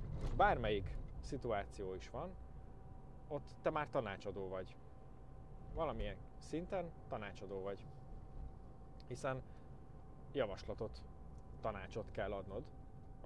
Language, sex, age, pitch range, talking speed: Hungarian, male, 30-49, 95-130 Hz, 85 wpm